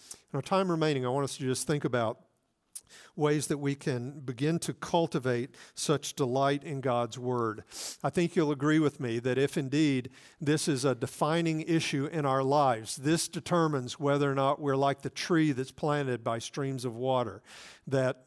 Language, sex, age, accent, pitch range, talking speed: English, male, 50-69, American, 125-155 Hz, 185 wpm